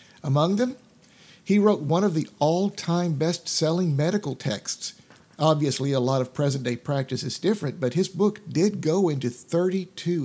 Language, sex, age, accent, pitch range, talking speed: English, male, 50-69, American, 130-170 Hz, 150 wpm